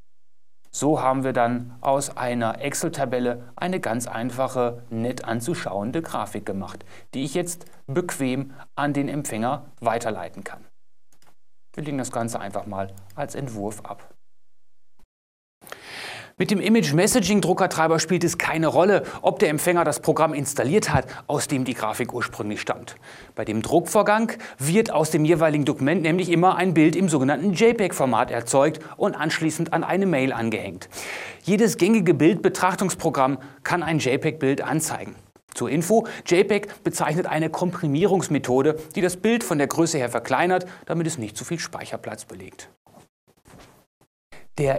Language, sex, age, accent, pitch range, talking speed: German, male, 30-49, German, 120-175 Hz, 140 wpm